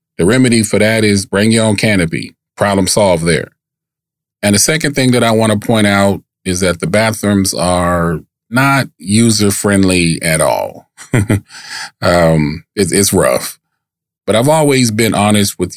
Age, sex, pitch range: 30-49, male, 90-115 Hz